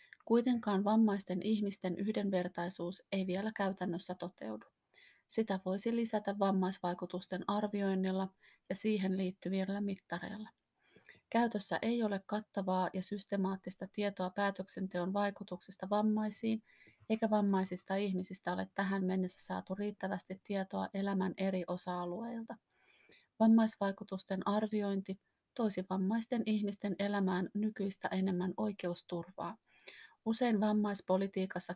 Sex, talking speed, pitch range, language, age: female, 95 wpm, 190-215 Hz, Finnish, 30-49